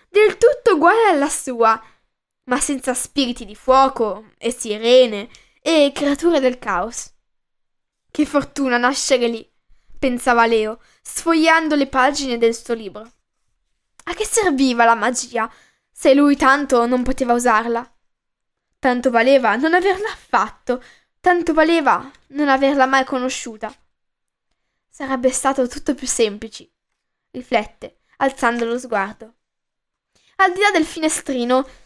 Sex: female